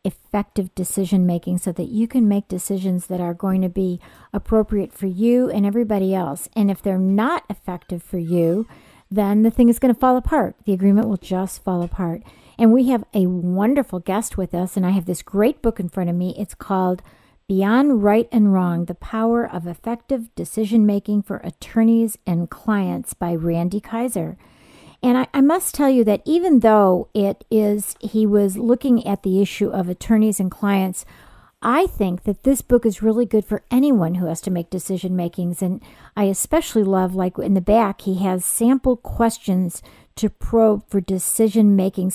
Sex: female